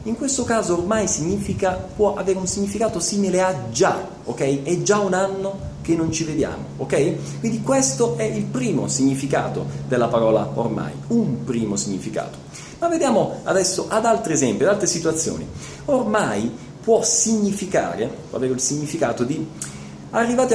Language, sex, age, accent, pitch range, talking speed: Italian, male, 30-49, native, 140-220 Hz, 150 wpm